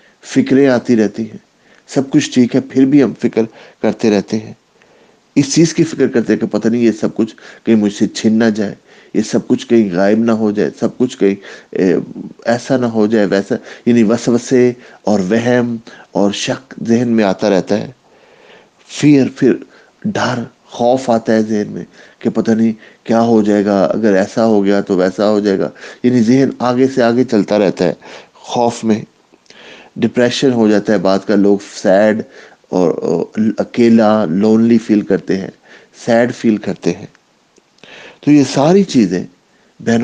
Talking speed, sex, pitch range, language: 170 wpm, male, 105-120 Hz, English